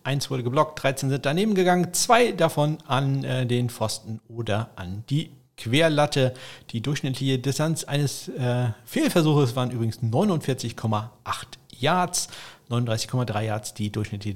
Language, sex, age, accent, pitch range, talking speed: German, male, 50-69, German, 115-140 Hz, 130 wpm